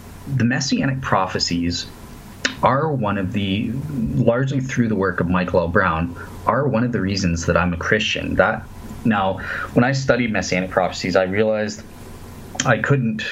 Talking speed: 160 wpm